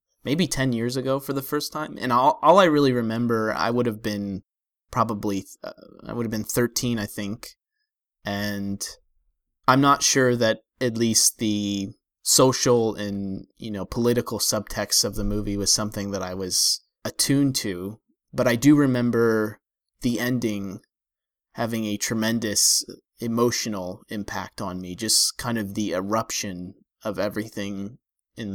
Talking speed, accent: 150 wpm, American